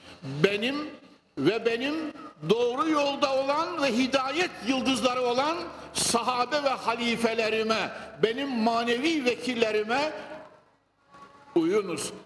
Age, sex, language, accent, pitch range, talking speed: 60-79, male, Turkish, native, 190-255 Hz, 85 wpm